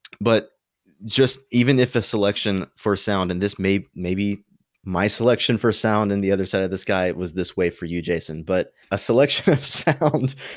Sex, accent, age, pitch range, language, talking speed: male, American, 20-39, 90-110 Hz, English, 195 wpm